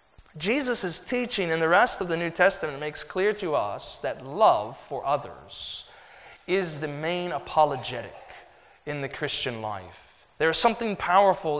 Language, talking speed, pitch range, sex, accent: English, 155 wpm, 140-180 Hz, male, American